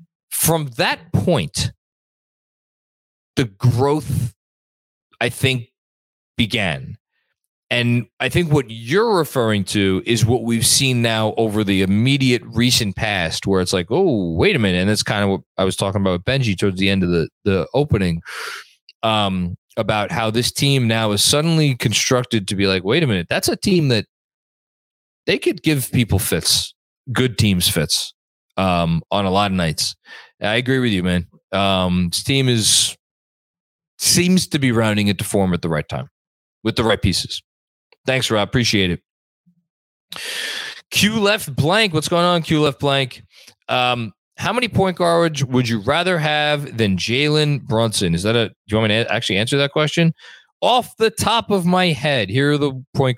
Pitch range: 105-150 Hz